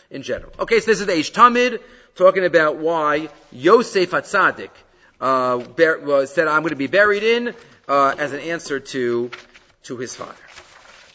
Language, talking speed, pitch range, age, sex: English, 170 wpm, 160-195 Hz, 40-59, male